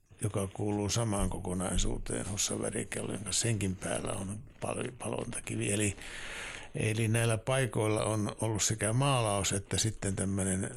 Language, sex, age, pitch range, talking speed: Finnish, male, 60-79, 95-115 Hz, 115 wpm